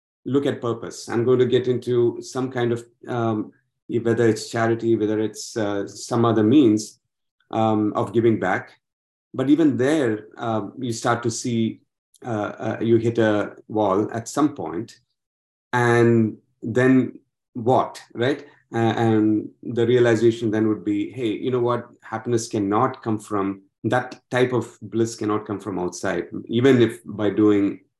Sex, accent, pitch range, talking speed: male, Indian, 105-120 Hz, 155 wpm